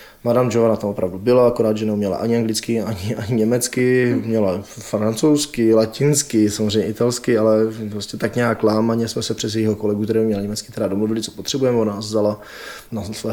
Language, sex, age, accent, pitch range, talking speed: Czech, male, 20-39, native, 100-115 Hz, 175 wpm